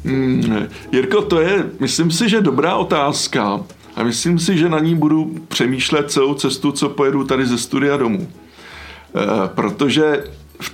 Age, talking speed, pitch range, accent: 50-69, 145 wpm, 125-150 Hz, native